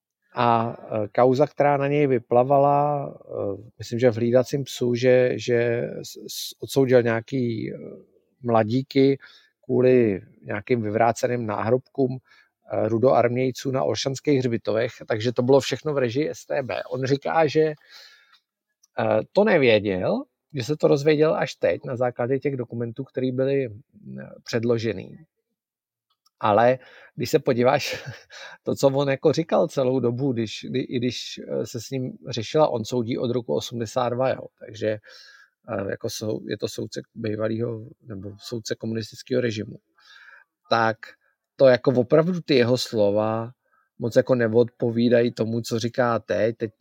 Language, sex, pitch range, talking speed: Czech, male, 115-135 Hz, 125 wpm